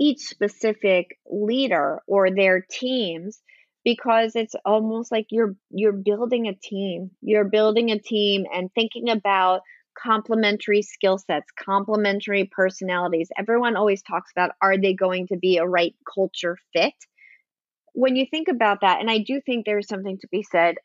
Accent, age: American, 30-49